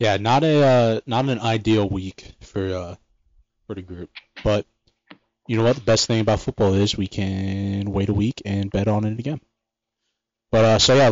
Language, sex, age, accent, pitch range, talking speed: English, male, 20-39, American, 100-115 Hz, 200 wpm